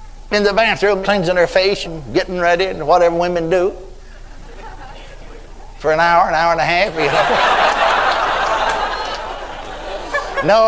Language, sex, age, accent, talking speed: English, male, 60-79, American, 125 wpm